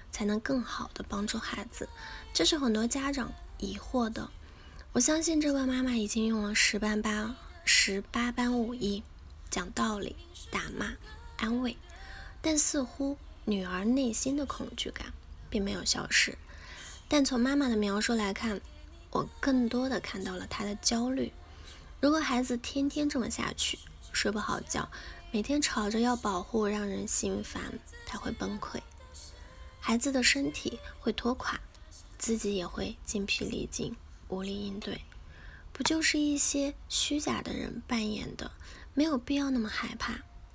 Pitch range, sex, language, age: 205-260 Hz, female, Chinese, 10-29